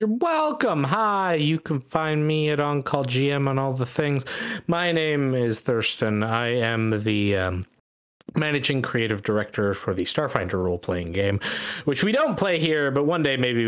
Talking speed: 160 wpm